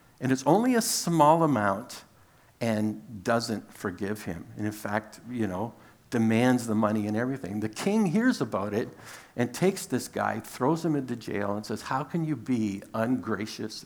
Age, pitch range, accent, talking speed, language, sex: 60-79, 105-140 Hz, American, 175 wpm, English, male